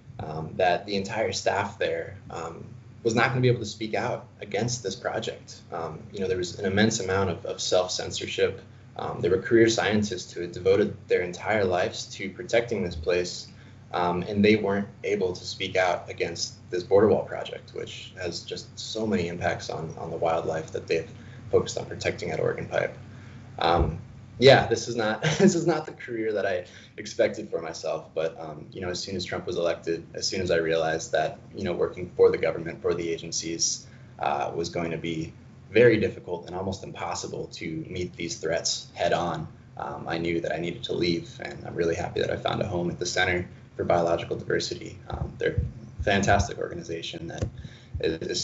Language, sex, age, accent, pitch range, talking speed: English, male, 20-39, American, 90-125 Hz, 200 wpm